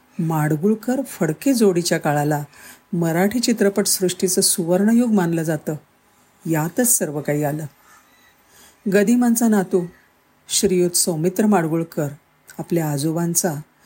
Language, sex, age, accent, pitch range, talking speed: Marathi, female, 50-69, native, 155-200 Hz, 90 wpm